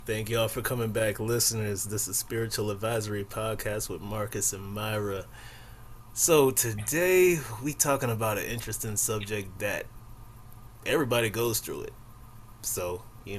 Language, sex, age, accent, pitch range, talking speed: English, male, 20-39, American, 105-115 Hz, 140 wpm